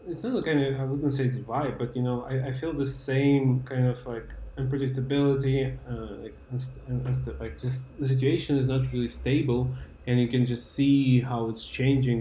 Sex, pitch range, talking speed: male, 105-130 Hz, 210 wpm